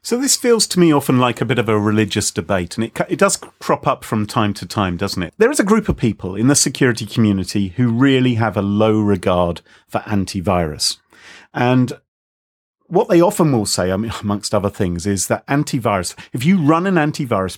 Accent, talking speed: British, 205 wpm